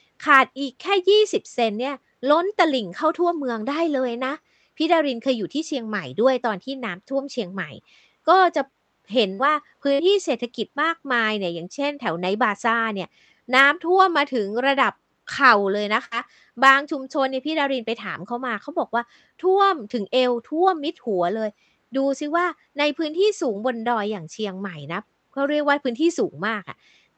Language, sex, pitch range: Thai, female, 220-290 Hz